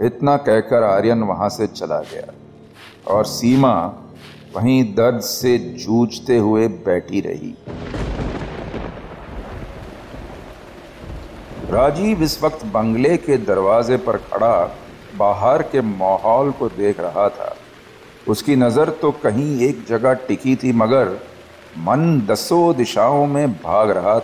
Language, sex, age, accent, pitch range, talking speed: Hindi, male, 50-69, native, 110-135 Hz, 115 wpm